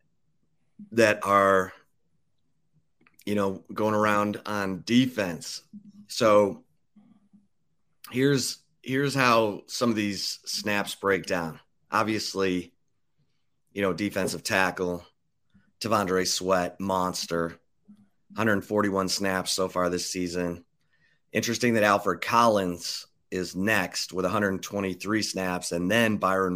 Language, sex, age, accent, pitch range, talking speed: English, male, 30-49, American, 95-115 Hz, 100 wpm